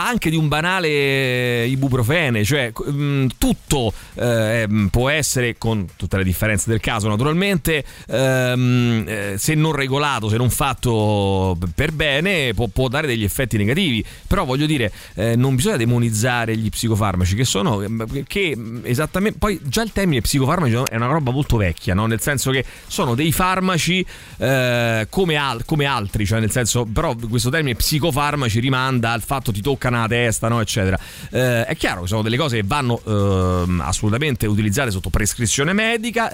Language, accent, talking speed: Italian, native, 160 wpm